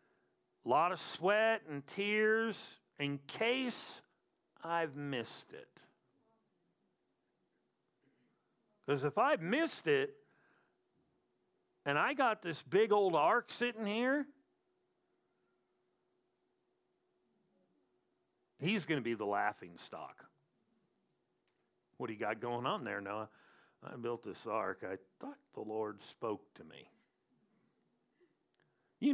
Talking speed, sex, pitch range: 105 wpm, male, 140-220 Hz